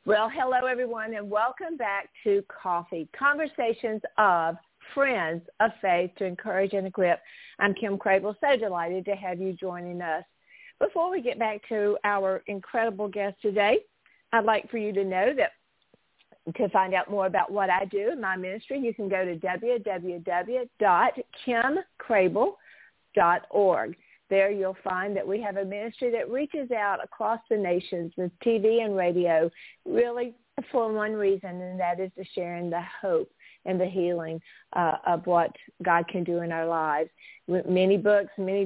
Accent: American